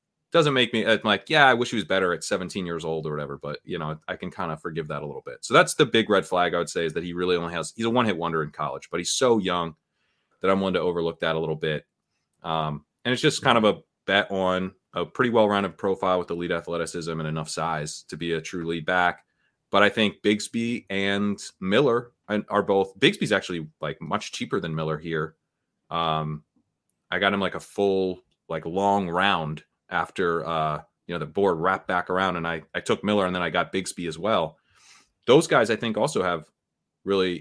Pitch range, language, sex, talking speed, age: 80-100 Hz, English, male, 235 wpm, 30-49